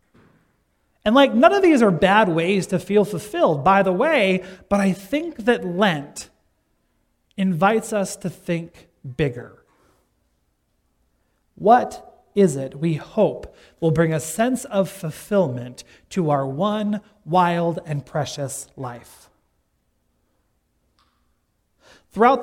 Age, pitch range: 30-49, 165-235 Hz